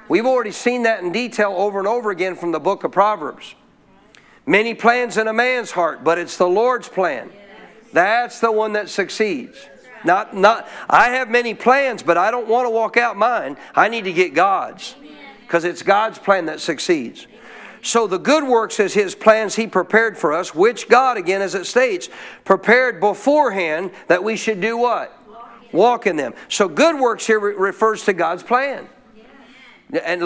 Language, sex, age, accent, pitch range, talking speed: English, male, 50-69, American, 195-240 Hz, 185 wpm